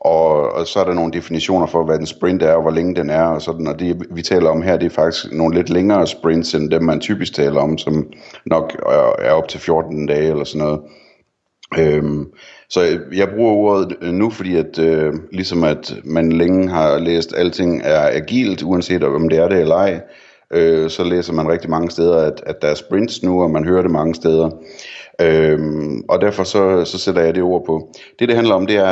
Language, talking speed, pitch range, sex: Danish, 225 wpm, 80-90 Hz, male